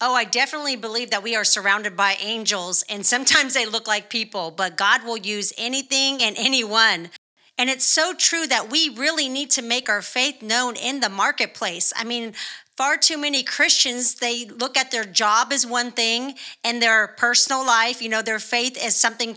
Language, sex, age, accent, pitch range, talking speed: English, female, 40-59, American, 220-265 Hz, 195 wpm